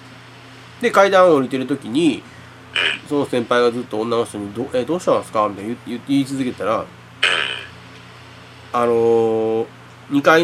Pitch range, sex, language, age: 105-160 Hz, male, Japanese, 30-49